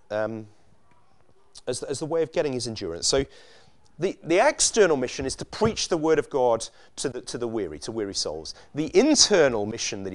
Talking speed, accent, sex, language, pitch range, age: 190 wpm, British, male, English, 130-180 Hz, 30-49